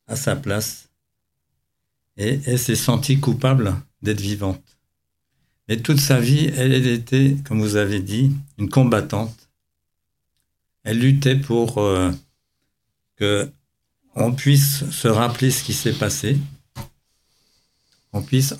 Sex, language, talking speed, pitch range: male, French, 120 wpm, 100-135 Hz